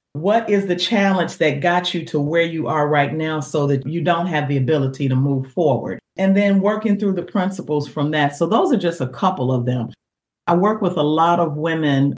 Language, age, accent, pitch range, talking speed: English, 40-59, American, 145-190 Hz, 225 wpm